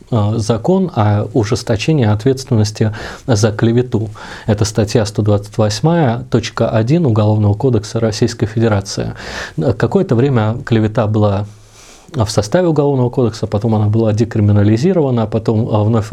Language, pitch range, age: Russian, 110-130 Hz, 20-39